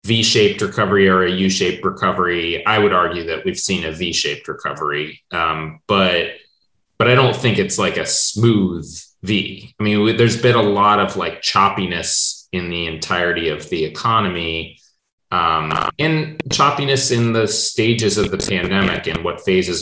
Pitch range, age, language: 85-115 Hz, 30-49, English